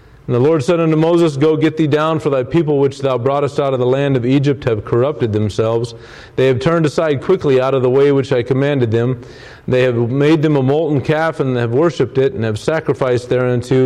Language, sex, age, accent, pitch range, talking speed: English, male, 40-59, American, 120-150 Hz, 230 wpm